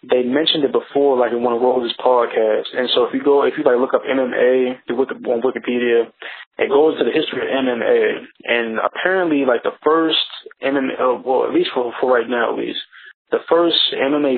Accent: American